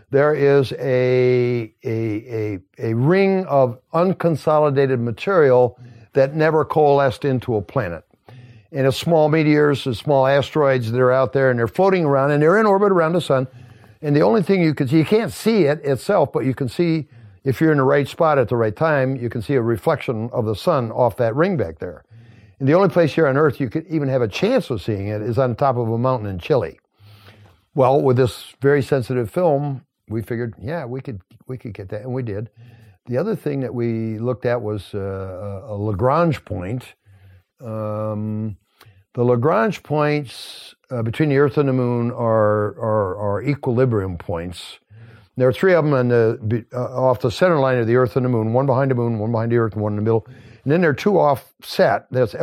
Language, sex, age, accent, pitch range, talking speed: English, male, 60-79, American, 115-145 Hz, 215 wpm